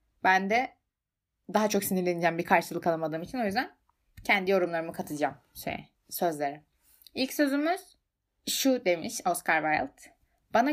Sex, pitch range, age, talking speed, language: female, 180-225 Hz, 20-39, 130 wpm, Turkish